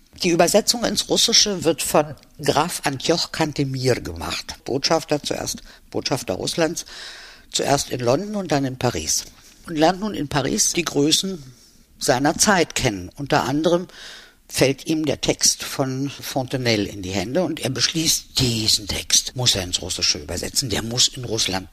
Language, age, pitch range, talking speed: German, 60-79, 110-160 Hz, 155 wpm